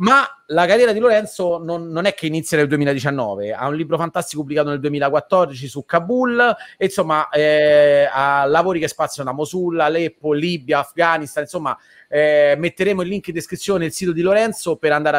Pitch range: 135-175 Hz